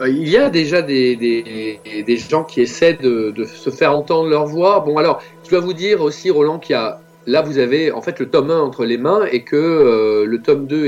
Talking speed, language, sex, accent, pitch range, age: 250 wpm, French, male, French, 125-165 Hz, 40-59